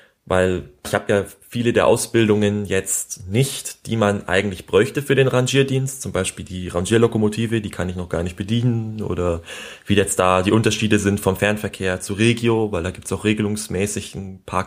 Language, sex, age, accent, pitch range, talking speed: German, male, 30-49, German, 90-110 Hz, 190 wpm